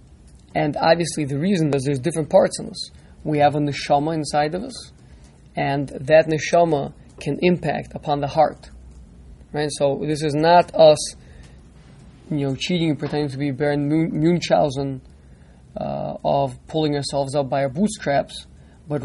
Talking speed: 155 wpm